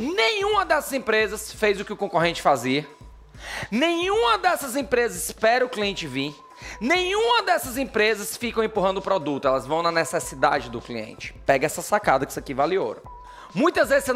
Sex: male